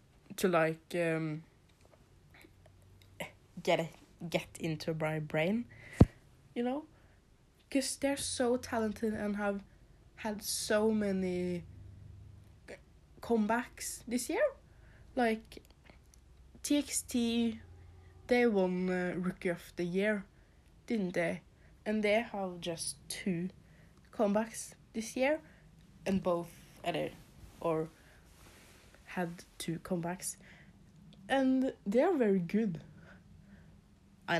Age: 20-39